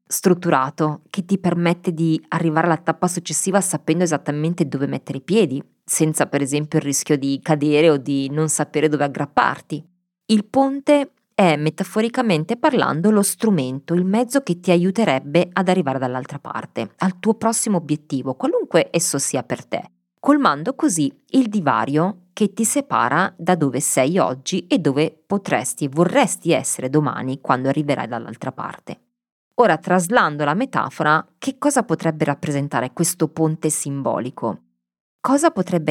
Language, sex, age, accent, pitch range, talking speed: Italian, female, 20-39, native, 145-190 Hz, 145 wpm